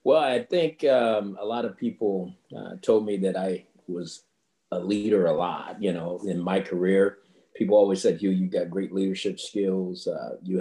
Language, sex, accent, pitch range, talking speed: English, male, American, 90-100 Hz, 190 wpm